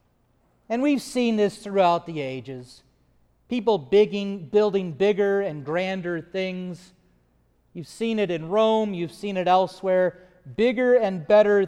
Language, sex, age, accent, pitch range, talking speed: English, male, 40-59, American, 170-220 Hz, 130 wpm